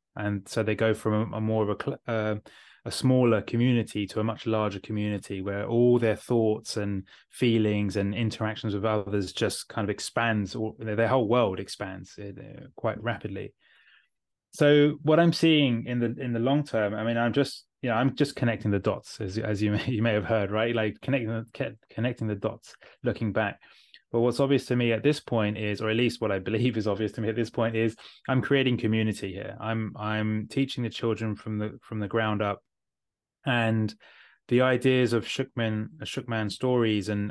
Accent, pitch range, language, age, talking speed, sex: British, 105-120 Hz, English, 20-39, 195 wpm, male